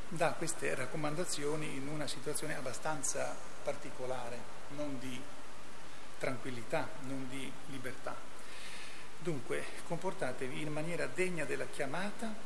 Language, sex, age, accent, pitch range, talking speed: Italian, male, 40-59, native, 130-155 Hz, 100 wpm